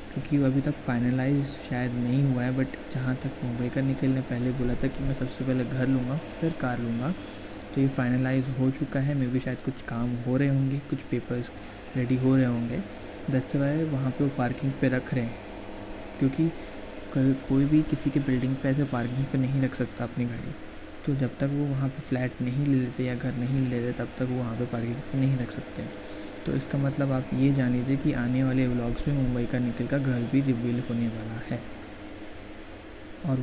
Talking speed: 140 wpm